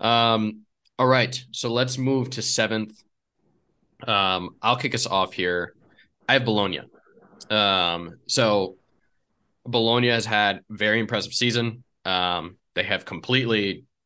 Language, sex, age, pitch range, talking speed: English, male, 20-39, 90-115 Hz, 125 wpm